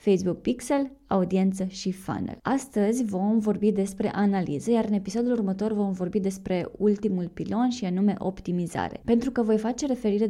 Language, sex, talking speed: Romanian, female, 155 wpm